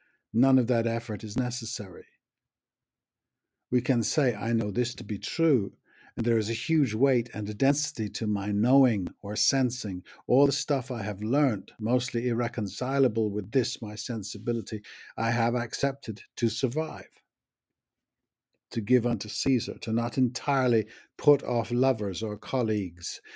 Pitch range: 110-125 Hz